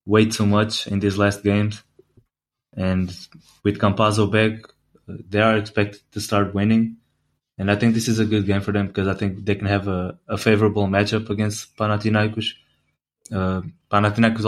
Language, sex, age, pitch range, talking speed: English, male, 20-39, 100-110 Hz, 170 wpm